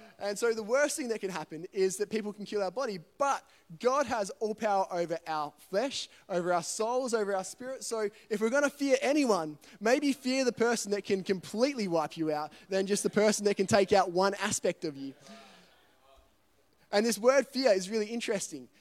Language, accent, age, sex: English, Australian, 20-39, male